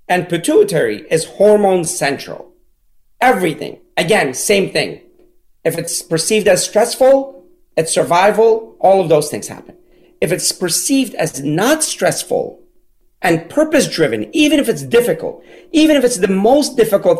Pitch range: 170-270 Hz